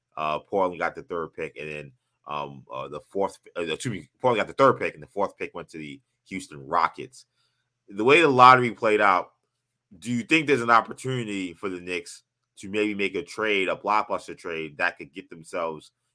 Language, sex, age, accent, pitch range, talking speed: English, male, 20-39, American, 75-100 Hz, 200 wpm